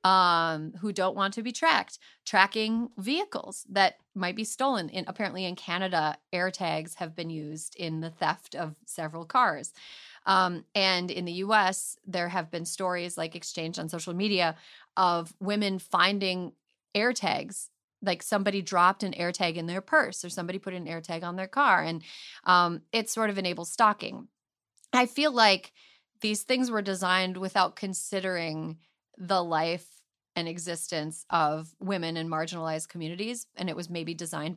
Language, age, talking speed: English, 30-49, 165 wpm